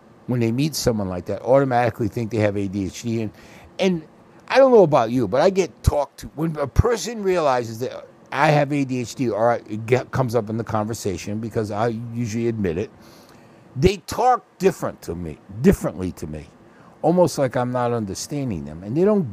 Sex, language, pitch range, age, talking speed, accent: male, English, 110-165 Hz, 60-79, 190 wpm, American